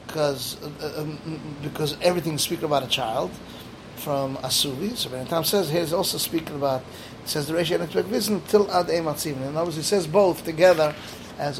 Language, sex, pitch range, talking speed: English, male, 140-175 Hz, 165 wpm